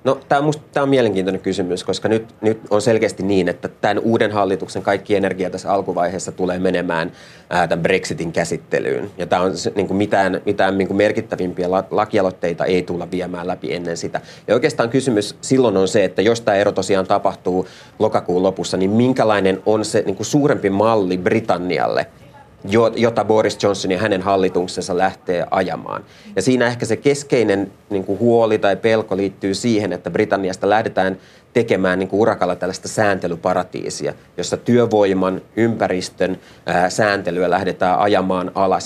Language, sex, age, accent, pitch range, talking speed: Finnish, male, 30-49, native, 90-110 Hz, 155 wpm